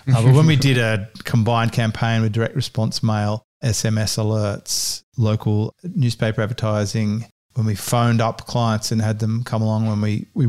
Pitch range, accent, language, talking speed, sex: 110-120 Hz, Australian, English, 170 wpm, male